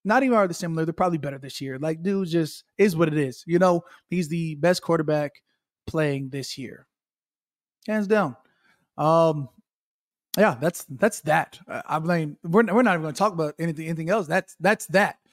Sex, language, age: male, English, 20-39